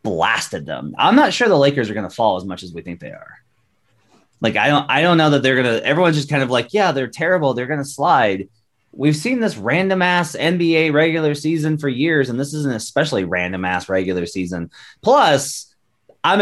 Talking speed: 225 wpm